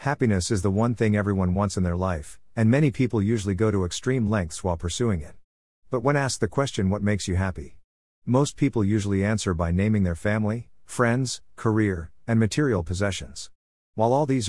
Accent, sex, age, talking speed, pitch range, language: American, male, 50-69, 190 wpm, 90-115 Hz, English